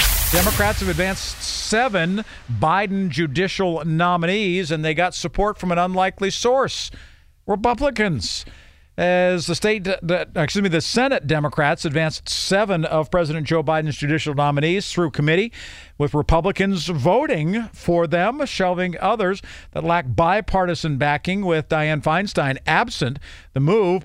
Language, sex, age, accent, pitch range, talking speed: English, male, 50-69, American, 150-185 Hz, 130 wpm